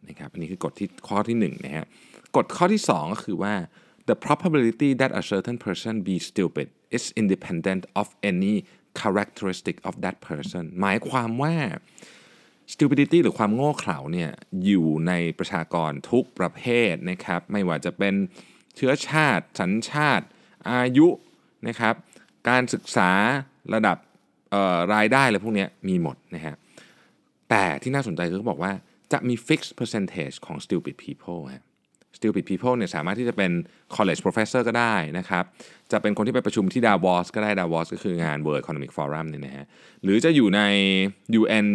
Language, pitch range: Thai, 90-130 Hz